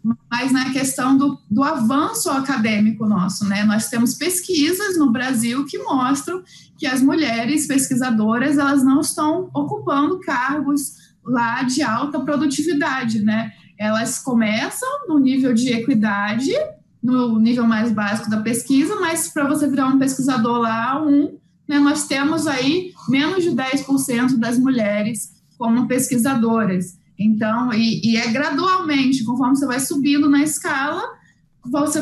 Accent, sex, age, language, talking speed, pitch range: Brazilian, female, 20-39, Portuguese, 135 wpm, 225-295 Hz